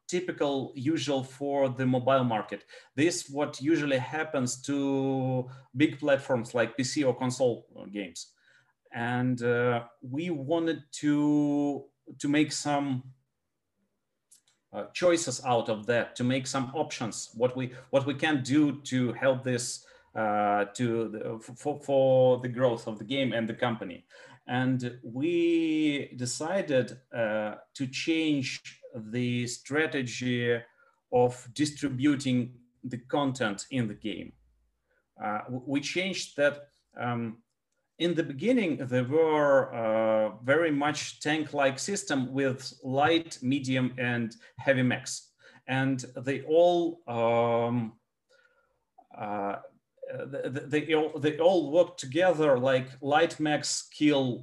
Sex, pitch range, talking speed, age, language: male, 125-150 Hz, 120 wpm, 40-59, English